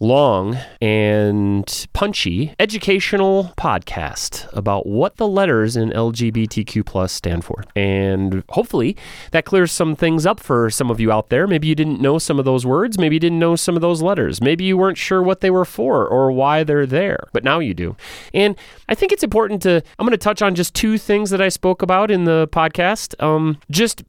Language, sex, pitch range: English, male, 110-175 Hz